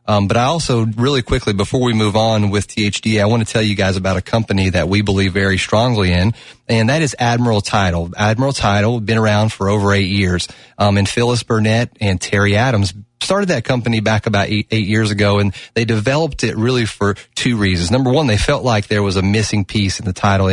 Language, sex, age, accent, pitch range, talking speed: English, male, 30-49, American, 100-120 Hz, 225 wpm